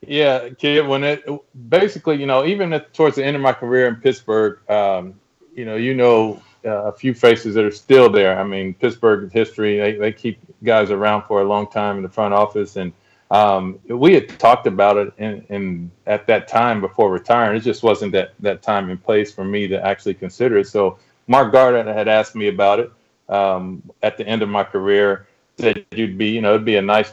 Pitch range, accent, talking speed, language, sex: 95-110 Hz, American, 215 wpm, English, male